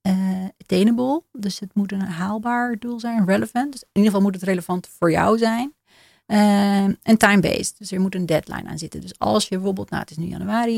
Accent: Dutch